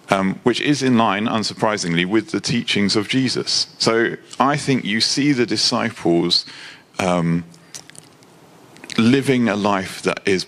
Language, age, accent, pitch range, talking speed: English, 40-59, British, 105-135 Hz, 140 wpm